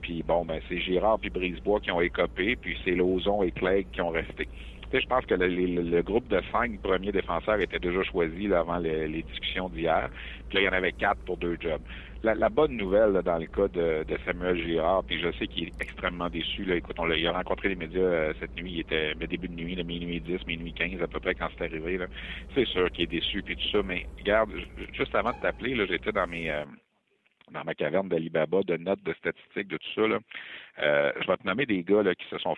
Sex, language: male, French